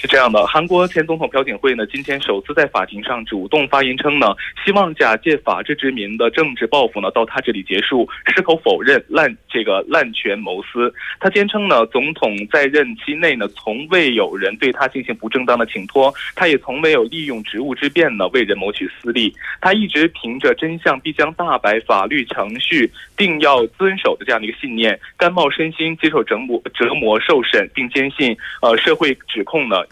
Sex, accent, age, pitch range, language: male, Chinese, 20-39, 135-190 Hz, Korean